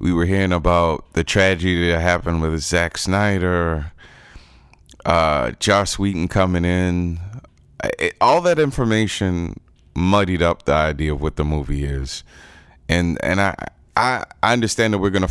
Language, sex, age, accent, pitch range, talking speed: English, male, 20-39, American, 80-100 Hz, 140 wpm